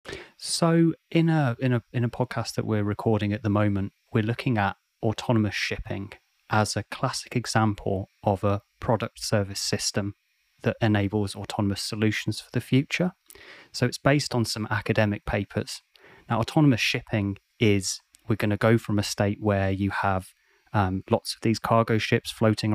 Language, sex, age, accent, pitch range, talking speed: English, male, 30-49, British, 105-120 Hz, 165 wpm